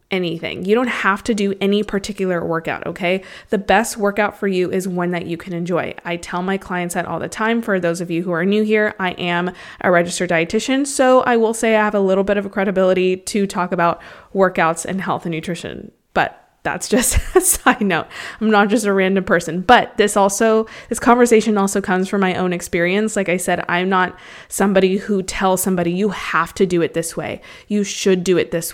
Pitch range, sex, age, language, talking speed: 180-215 Hz, female, 20-39, English, 220 wpm